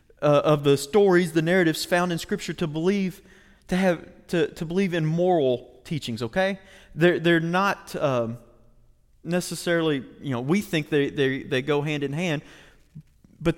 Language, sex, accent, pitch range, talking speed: English, male, American, 135-175 Hz, 165 wpm